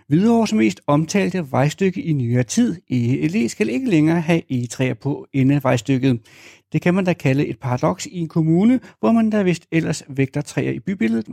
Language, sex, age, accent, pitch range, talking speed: Danish, male, 60-79, native, 130-185 Hz, 185 wpm